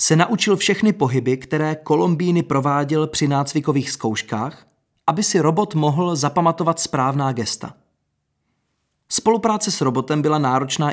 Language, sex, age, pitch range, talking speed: Czech, male, 30-49, 120-160 Hz, 120 wpm